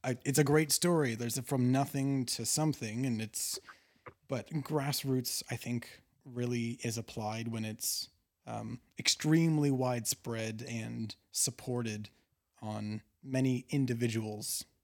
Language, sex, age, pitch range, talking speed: English, male, 30-49, 110-135 Hz, 115 wpm